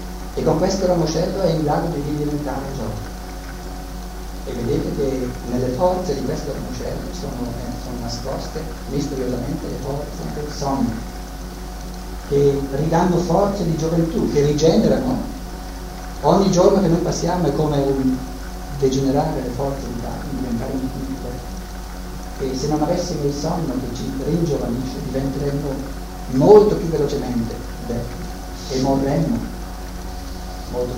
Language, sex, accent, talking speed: Italian, male, native, 130 wpm